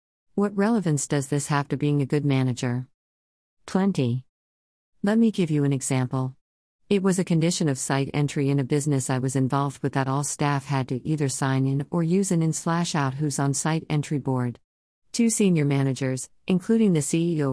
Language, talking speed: English, 185 wpm